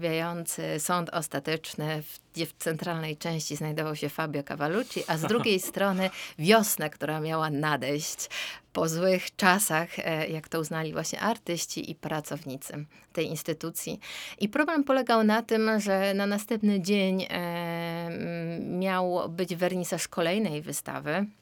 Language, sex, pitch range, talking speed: Polish, female, 165-215 Hz, 125 wpm